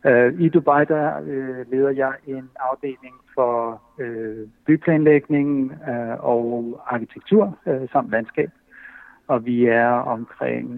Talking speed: 115 wpm